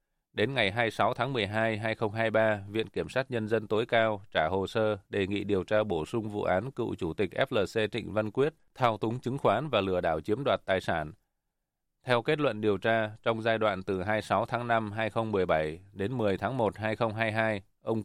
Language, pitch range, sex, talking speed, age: Vietnamese, 95-115 Hz, male, 205 wpm, 20-39